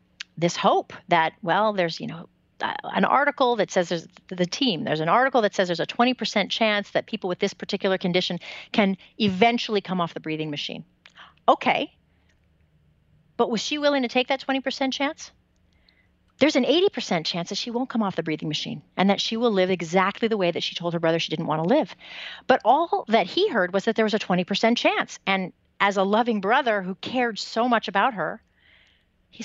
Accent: American